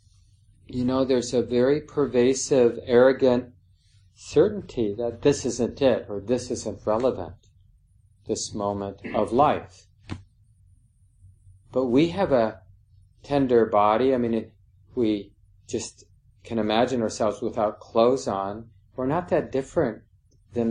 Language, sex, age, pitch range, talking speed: English, male, 40-59, 100-115 Hz, 120 wpm